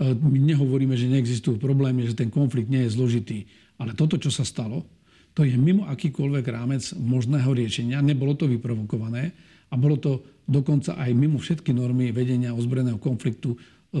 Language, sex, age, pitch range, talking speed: Slovak, male, 50-69, 120-140 Hz, 160 wpm